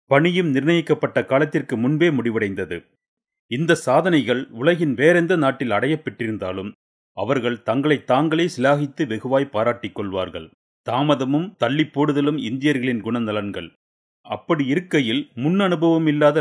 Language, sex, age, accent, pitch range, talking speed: Tamil, male, 40-59, native, 120-165 Hz, 95 wpm